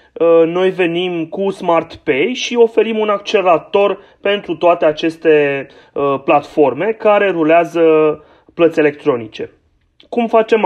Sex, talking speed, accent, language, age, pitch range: male, 105 wpm, native, Romanian, 30-49, 150-195 Hz